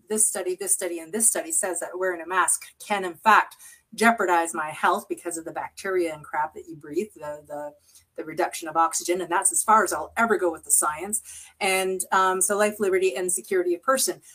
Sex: female